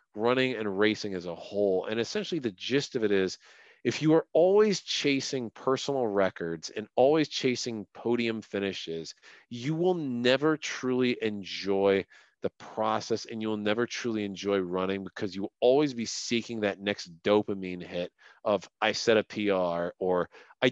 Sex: male